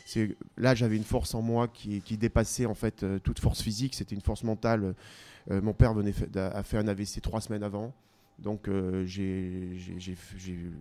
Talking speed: 190 wpm